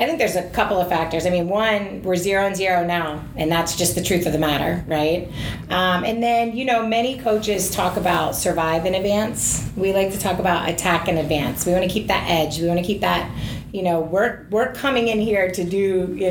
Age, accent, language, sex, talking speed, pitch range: 30-49, American, English, female, 230 wpm, 170-205 Hz